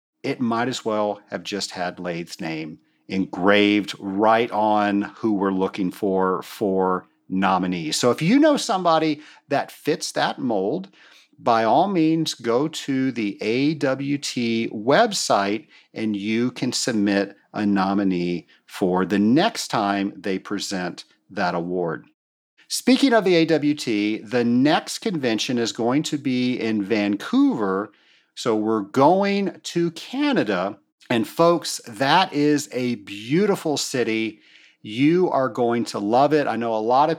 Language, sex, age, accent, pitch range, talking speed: English, male, 50-69, American, 105-155 Hz, 135 wpm